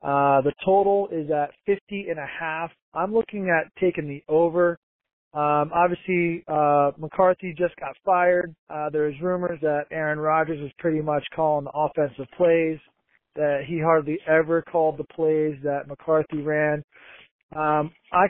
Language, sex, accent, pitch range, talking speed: English, male, American, 145-170 Hz, 155 wpm